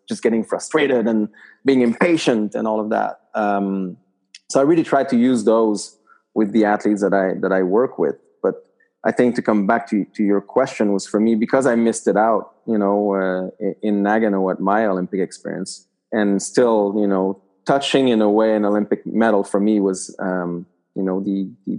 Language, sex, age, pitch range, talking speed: English, male, 30-49, 100-125 Hz, 200 wpm